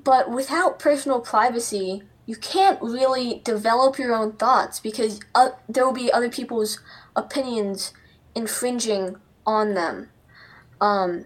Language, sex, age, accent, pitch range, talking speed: English, female, 10-29, American, 205-255 Hz, 125 wpm